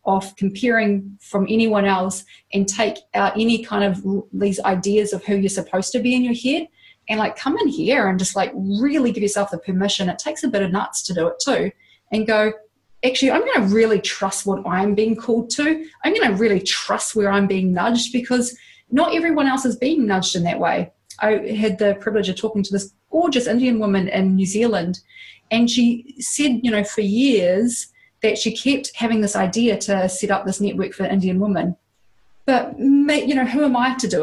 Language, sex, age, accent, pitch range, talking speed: English, female, 30-49, Australian, 195-255 Hz, 205 wpm